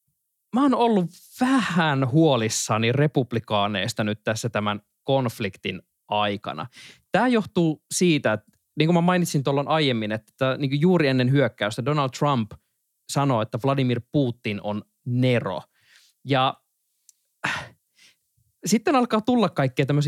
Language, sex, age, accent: Finnish, male, 20-39, native